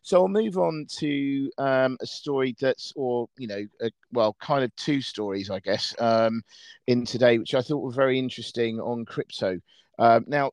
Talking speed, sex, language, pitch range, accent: 190 wpm, male, English, 110-130 Hz, British